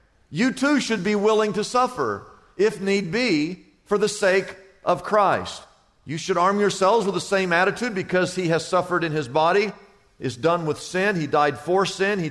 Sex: male